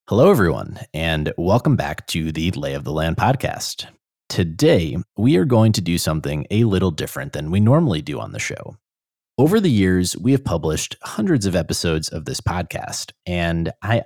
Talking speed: 185 wpm